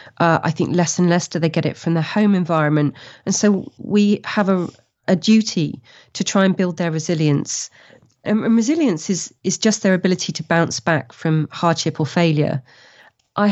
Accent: British